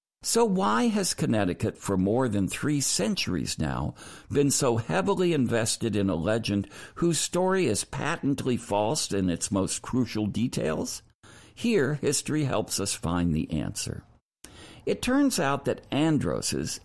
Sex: male